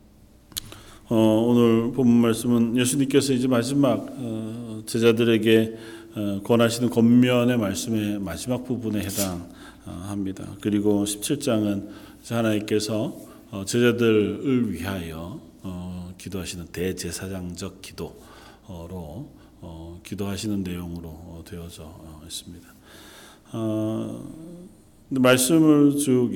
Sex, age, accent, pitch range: male, 40-59, native, 95-120 Hz